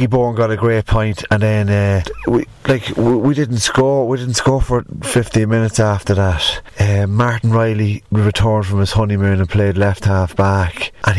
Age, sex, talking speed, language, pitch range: 30-49, male, 190 wpm, English, 100-115 Hz